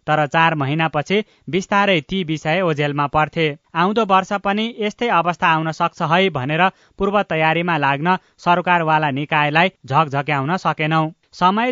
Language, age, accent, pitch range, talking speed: English, 20-39, Indian, 150-185 Hz, 175 wpm